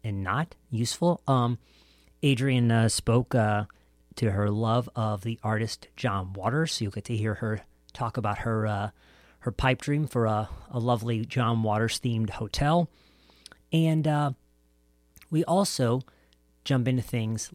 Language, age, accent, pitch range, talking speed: English, 40-59, American, 105-135 Hz, 150 wpm